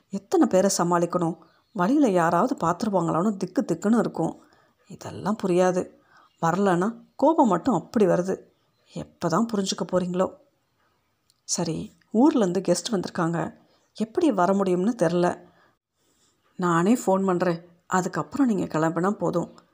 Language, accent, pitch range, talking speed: Tamil, native, 175-220 Hz, 105 wpm